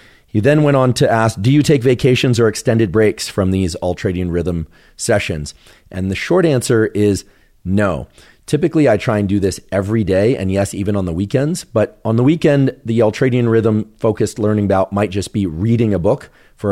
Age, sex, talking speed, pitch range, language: 40-59, male, 195 wpm, 90-110 Hz, English